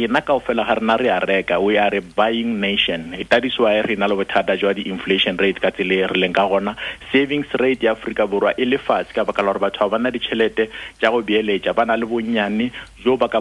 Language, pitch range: English, 100-120 Hz